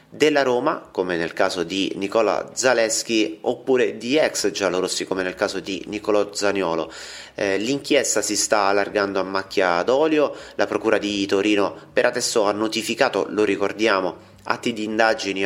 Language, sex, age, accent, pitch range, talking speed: Italian, male, 30-49, native, 100-120 Hz, 150 wpm